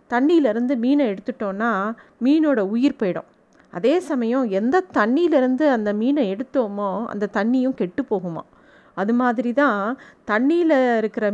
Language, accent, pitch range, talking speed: Tamil, native, 210-275 Hz, 110 wpm